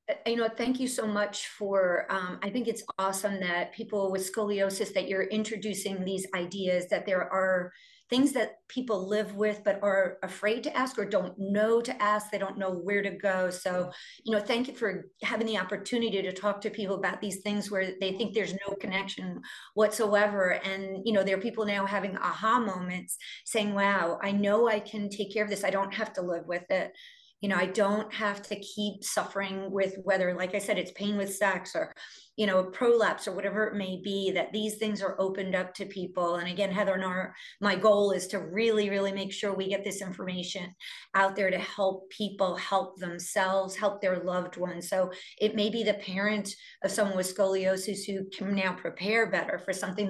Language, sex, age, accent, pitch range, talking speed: English, female, 40-59, American, 190-210 Hz, 210 wpm